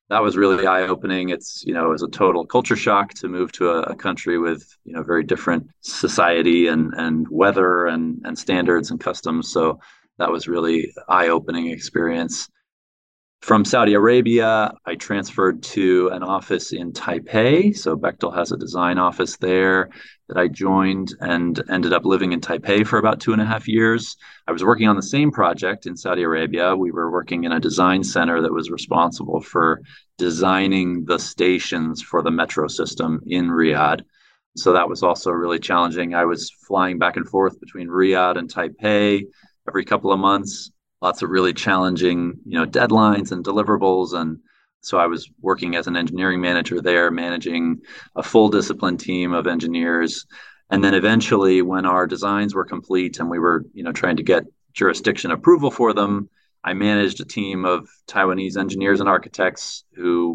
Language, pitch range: English, 85-100 Hz